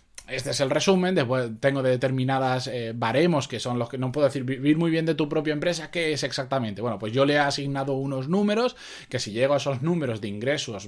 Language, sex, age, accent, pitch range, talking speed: Spanish, male, 20-39, Spanish, 130-200 Hz, 235 wpm